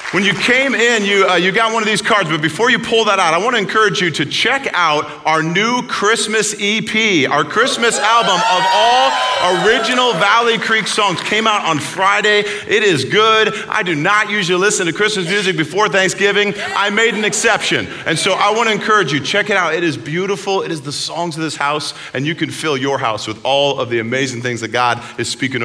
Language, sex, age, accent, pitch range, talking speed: English, male, 40-59, American, 155-210 Hz, 225 wpm